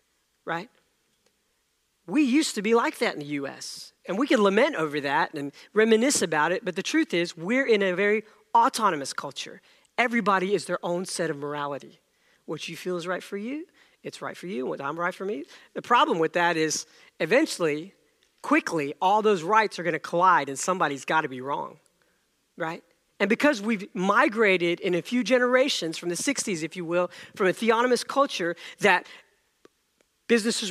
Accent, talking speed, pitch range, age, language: American, 180 wpm, 170-230 Hz, 40-59, English